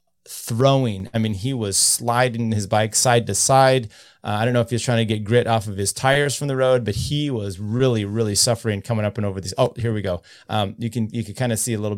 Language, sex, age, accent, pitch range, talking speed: English, male, 30-49, American, 110-130 Hz, 270 wpm